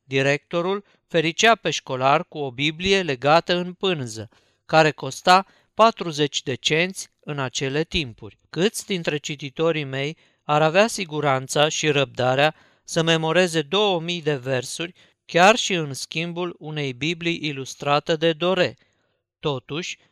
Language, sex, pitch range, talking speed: Romanian, male, 145-180 Hz, 125 wpm